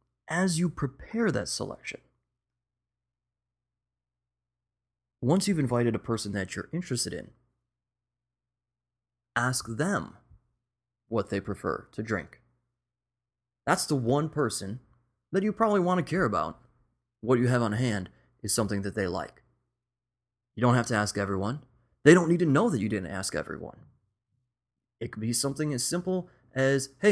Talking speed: 145 wpm